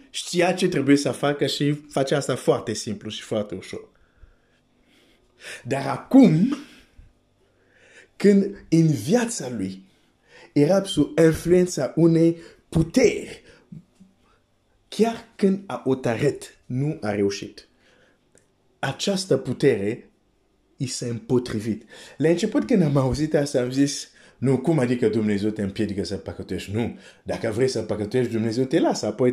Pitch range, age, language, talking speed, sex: 110-145 Hz, 50-69, Romanian, 120 wpm, male